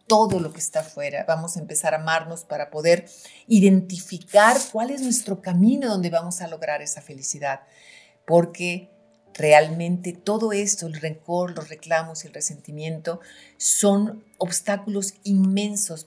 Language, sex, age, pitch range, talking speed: Spanish, female, 40-59, 160-215 Hz, 140 wpm